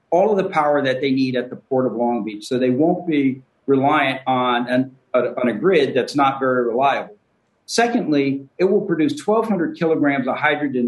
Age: 50-69